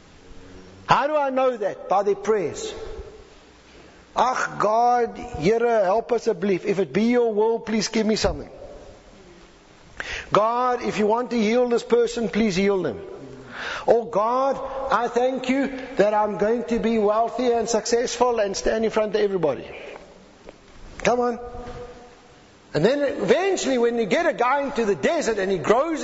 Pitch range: 215-270 Hz